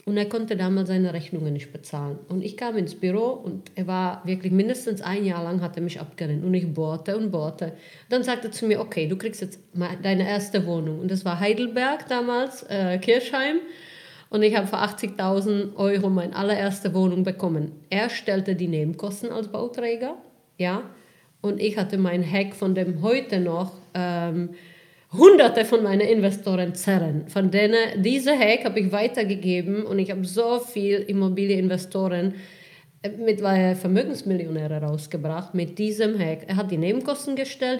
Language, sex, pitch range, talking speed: German, female, 180-215 Hz, 170 wpm